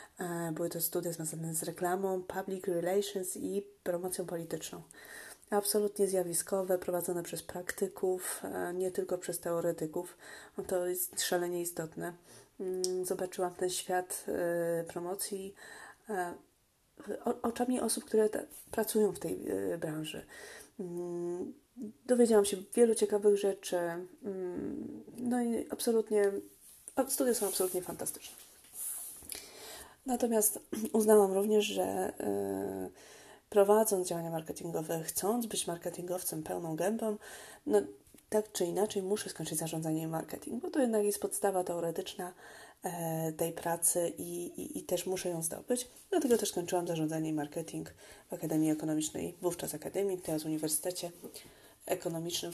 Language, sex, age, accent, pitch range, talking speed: Polish, female, 30-49, native, 170-205 Hz, 115 wpm